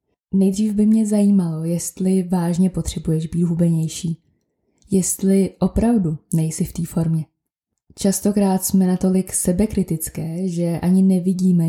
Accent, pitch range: native, 170-200 Hz